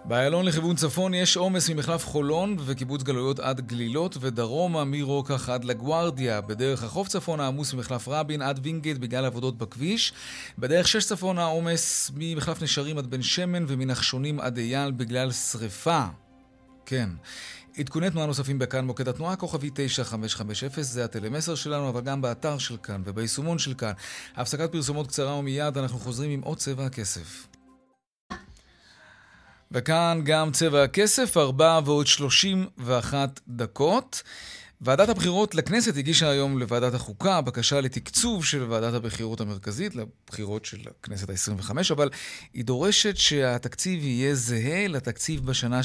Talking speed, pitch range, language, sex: 135 wpm, 120-165 Hz, Hebrew, male